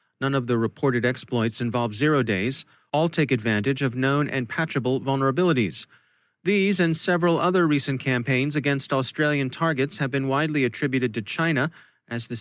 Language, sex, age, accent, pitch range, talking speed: English, male, 30-49, American, 125-150 Hz, 160 wpm